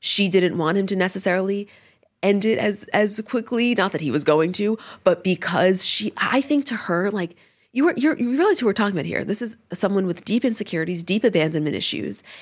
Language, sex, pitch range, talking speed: English, female, 170-230 Hz, 215 wpm